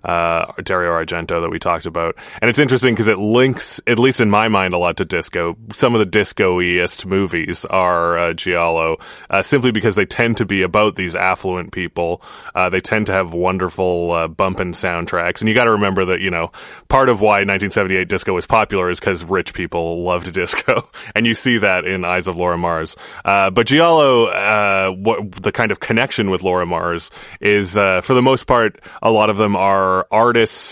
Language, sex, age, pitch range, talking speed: English, male, 20-39, 90-115 Hz, 205 wpm